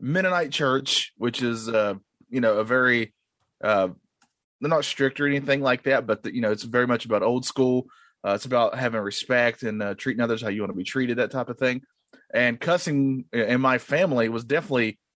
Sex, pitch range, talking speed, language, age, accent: male, 120-165 Hz, 205 wpm, English, 20-39, American